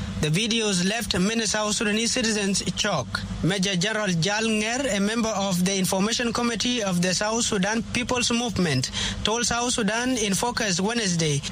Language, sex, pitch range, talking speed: English, male, 180-225 Hz, 155 wpm